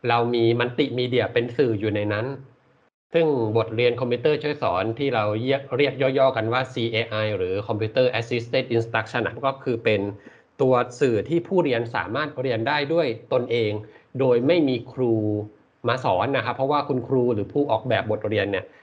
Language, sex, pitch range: Thai, male, 115-135 Hz